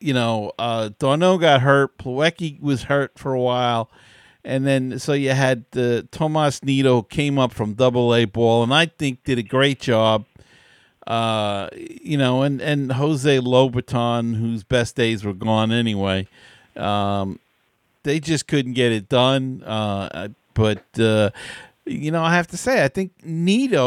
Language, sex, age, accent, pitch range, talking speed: English, male, 50-69, American, 115-140 Hz, 160 wpm